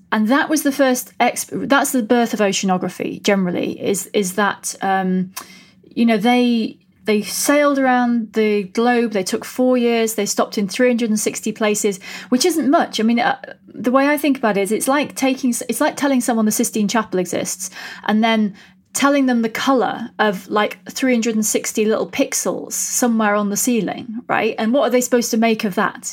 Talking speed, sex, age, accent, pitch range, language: 195 wpm, female, 30-49, British, 200-250 Hz, English